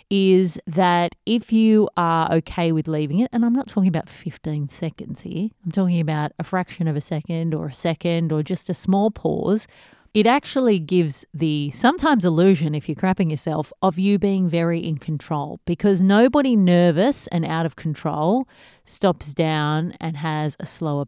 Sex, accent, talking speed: female, Australian, 175 wpm